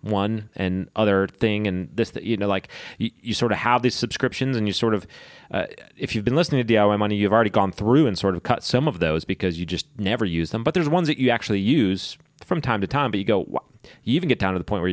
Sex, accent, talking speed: male, American, 270 wpm